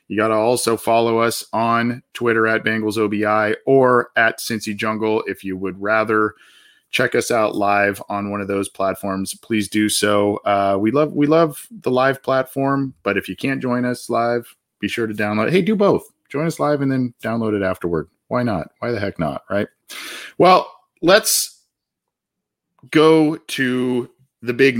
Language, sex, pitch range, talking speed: English, male, 110-135 Hz, 180 wpm